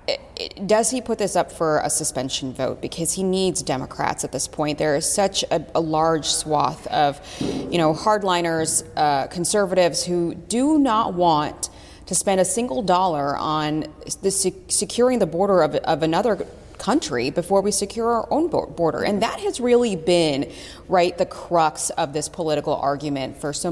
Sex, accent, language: female, American, English